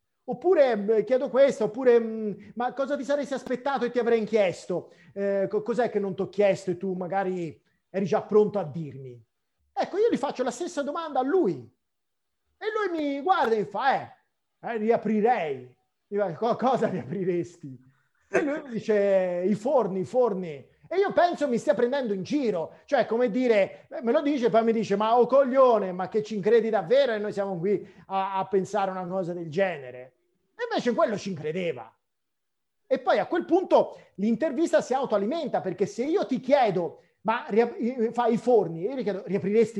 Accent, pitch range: native, 195-270 Hz